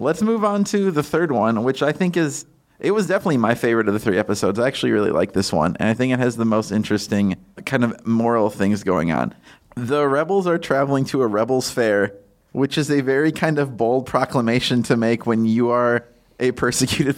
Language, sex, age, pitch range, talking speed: English, male, 30-49, 110-140 Hz, 220 wpm